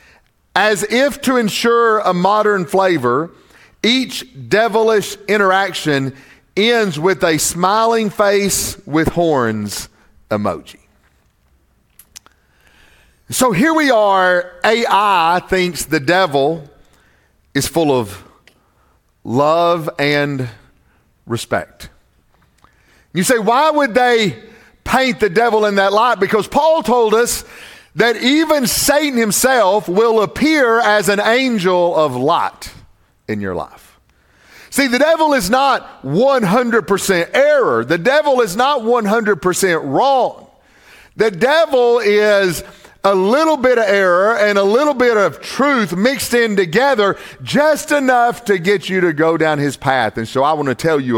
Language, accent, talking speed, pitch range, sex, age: English, American, 125 wpm, 140-235 Hz, male, 40-59